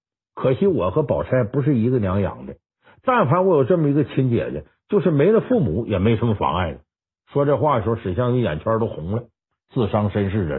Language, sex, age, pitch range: Chinese, male, 60-79, 100-165 Hz